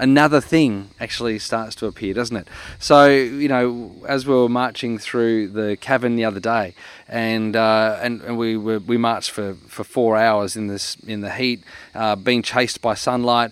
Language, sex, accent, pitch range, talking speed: English, male, Australian, 110-130 Hz, 190 wpm